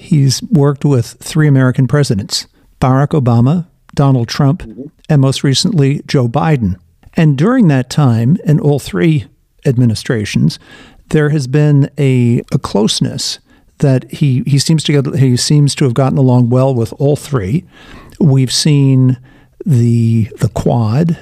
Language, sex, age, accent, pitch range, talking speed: English, male, 50-69, American, 125-150 Hz, 140 wpm